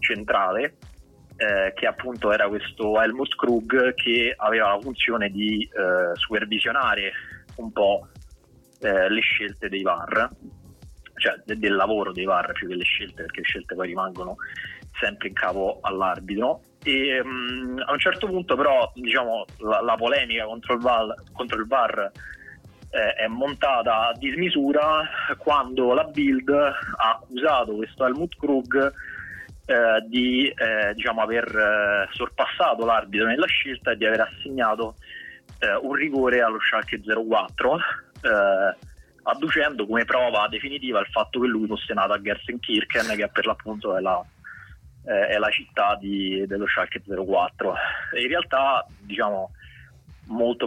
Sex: male